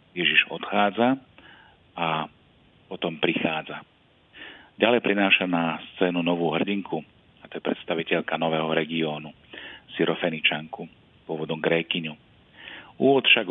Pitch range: 80-95 Hz